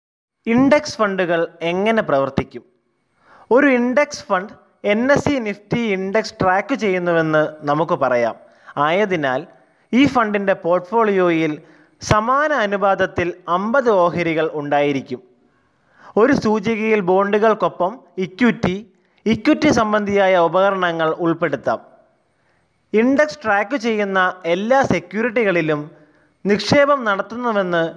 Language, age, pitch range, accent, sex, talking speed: Malayalam, 20-39, 165-225 Hz, native, male, 85 wpm